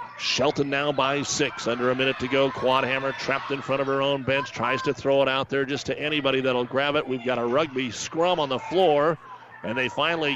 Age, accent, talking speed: 40-59, American, 240 wpm